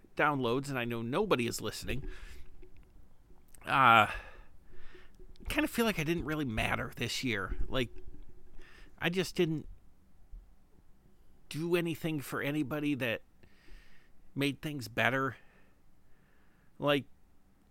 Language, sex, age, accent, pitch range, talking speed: English, male, 50-69, American, 110-150 Hz, 110 wpm